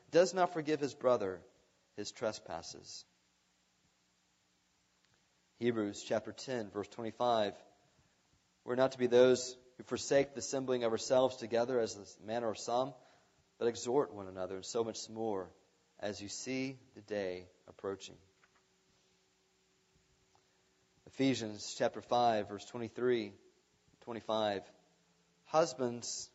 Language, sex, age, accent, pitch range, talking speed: English, male, 30-49, American, 100-120 Hz, 115 wpm